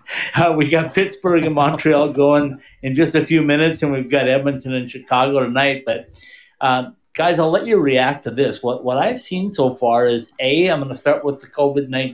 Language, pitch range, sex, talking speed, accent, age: English, 120-140 Hz, male, 215 wpm, American, 50-69